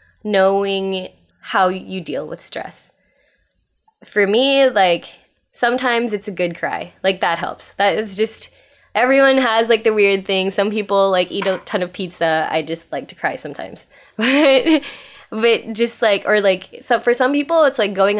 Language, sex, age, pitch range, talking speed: English, female, 20-39, 170-220 Hz, 175 wpm